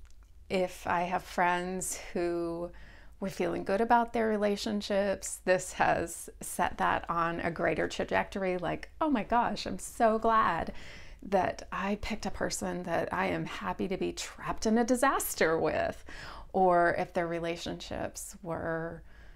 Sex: female